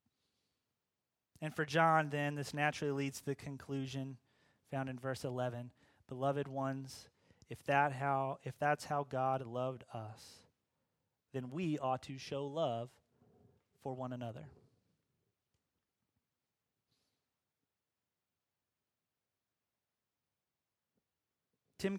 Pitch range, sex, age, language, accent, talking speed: 130-160 Hz, male, 30-49, English, American, 90 wpm